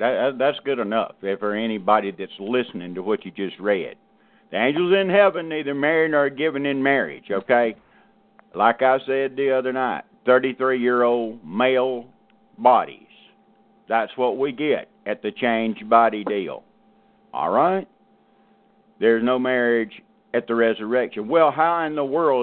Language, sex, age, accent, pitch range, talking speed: English, male, 50-69, American, 100-130 Hz, 145 wpm